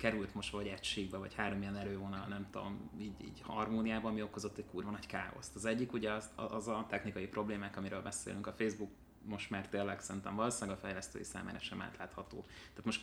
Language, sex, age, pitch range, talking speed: Hungarian, male, 20-39, 95-110 Hz, 200 wpm